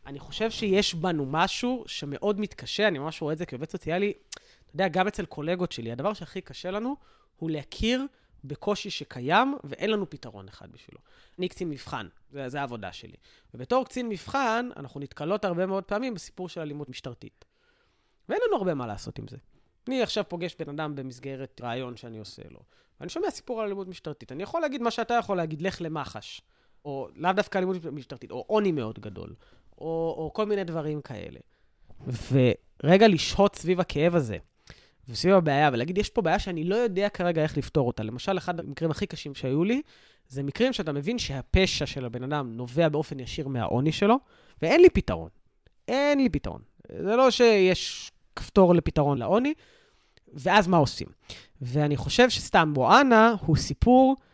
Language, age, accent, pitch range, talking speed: Hebrew, 20-39, native, 140-210 Hz, 160 wpm